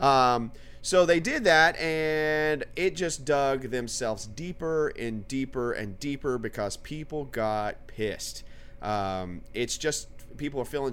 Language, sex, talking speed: English, male, 135 wpm